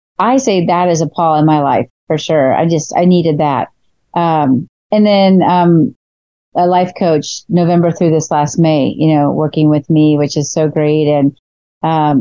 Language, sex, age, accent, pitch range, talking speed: English, female, 40-59, American, 155-195 Hz, 190 wpm